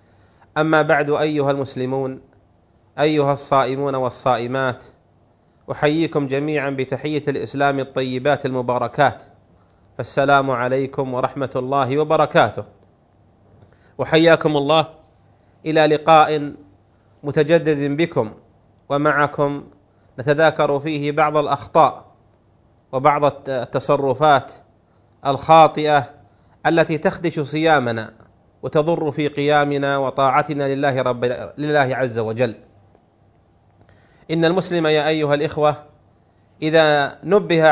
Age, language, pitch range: 30-49, Arabic, 115-155 Hz